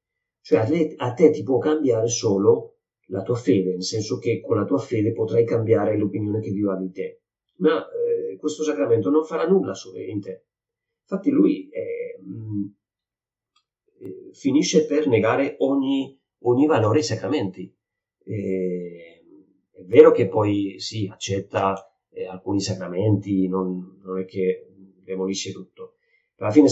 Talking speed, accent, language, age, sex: 155 wpm, native, Italian, 40-59, male